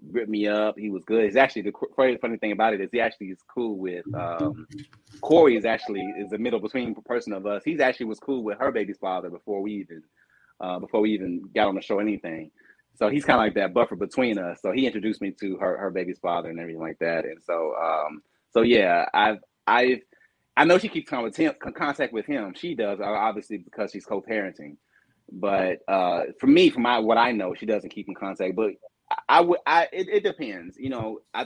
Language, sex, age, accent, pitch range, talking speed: English, male, 30-49, American, 100-135 Hz, 230 wpm